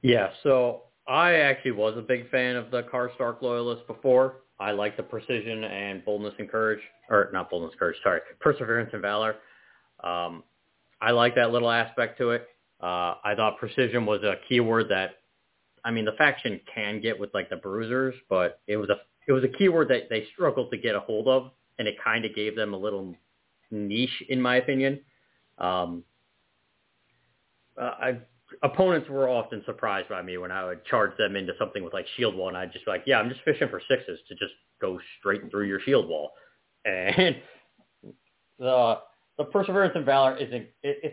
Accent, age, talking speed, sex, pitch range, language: American, 30-49, 190 wpm, male, 105-130 Hz, English